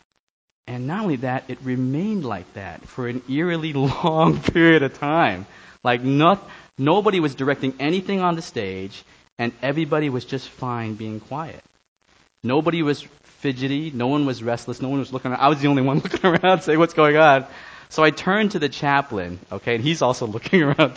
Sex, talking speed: male, 185 wpm